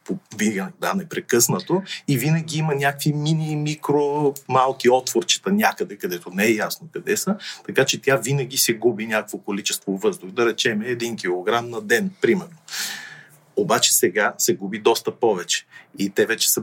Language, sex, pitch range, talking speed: Bulgarian, male, 115-185 Hz, 150 wpm